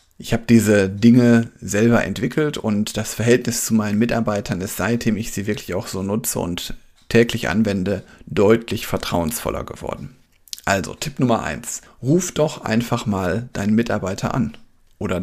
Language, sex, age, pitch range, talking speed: German, male, 40-59, 100-115 Hz, 150 wpm